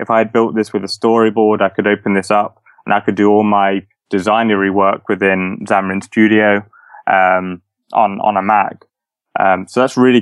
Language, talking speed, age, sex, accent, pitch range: English, 195 wpm, 20-39, male, British, 95-105 Hz